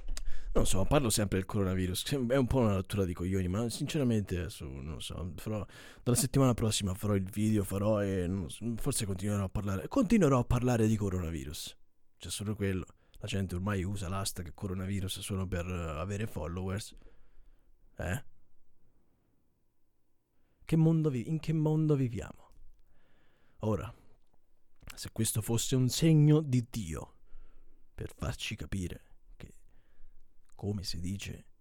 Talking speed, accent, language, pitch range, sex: 135 wpm, native, Italian, 90-115 Hz, male